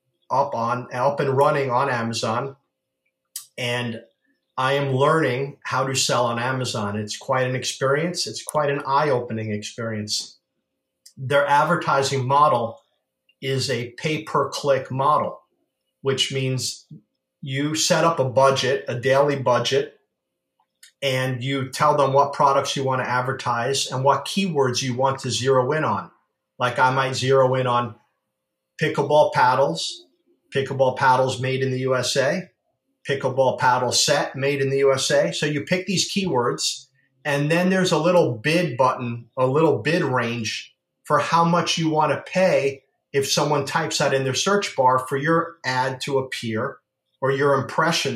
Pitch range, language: 130-150 Hz, English